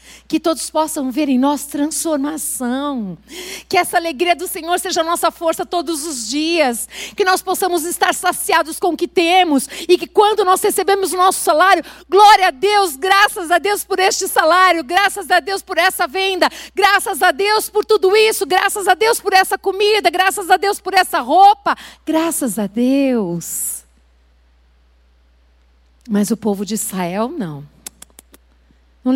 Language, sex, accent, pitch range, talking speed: Portuguese, female, Brazilian, 225-360 Hz, 165 wpm